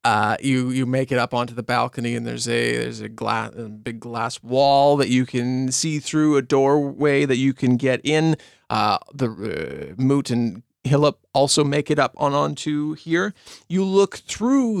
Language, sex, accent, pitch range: English, male, American, 115-150 Hz